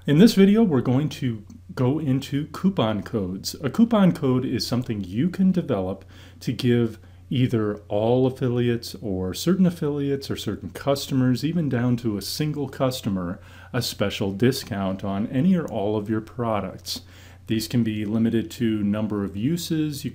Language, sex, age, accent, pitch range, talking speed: English, male, 40-59, American, 100-125 Hz, 160 wpm